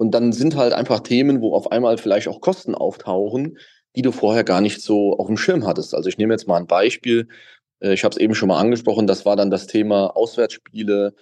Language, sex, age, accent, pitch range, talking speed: German, male, 30-49, German, 100-130 Hz, 230 wpm